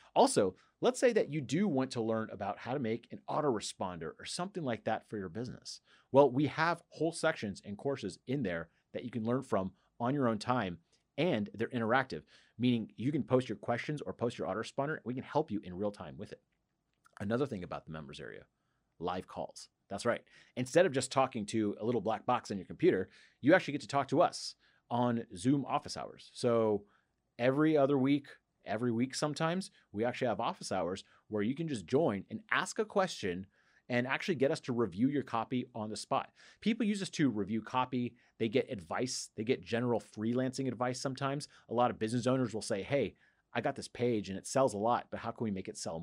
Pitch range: 110-135 Hz